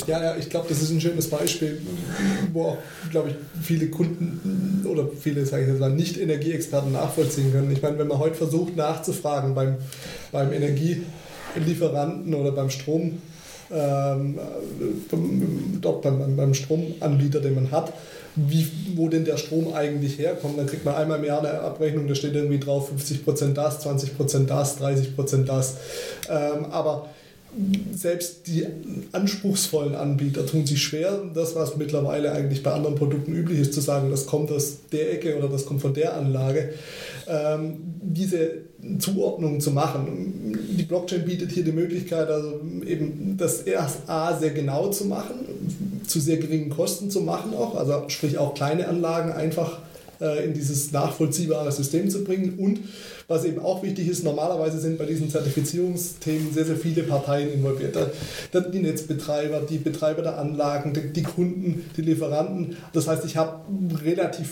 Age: 20-39